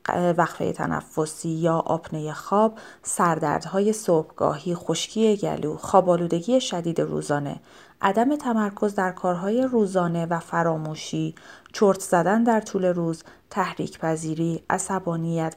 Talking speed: 105 wpm